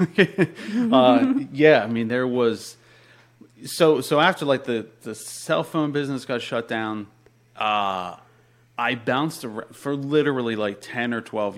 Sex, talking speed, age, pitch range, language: male, 140 wpm, 30-49, 100-125 Hz, English